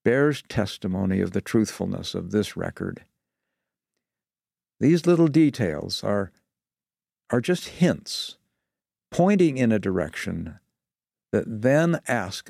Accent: American